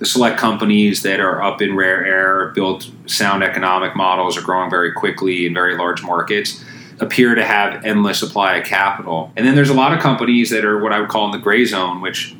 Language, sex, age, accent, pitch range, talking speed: English, male, 30-49, American, 95-115 Hz, 225 wpm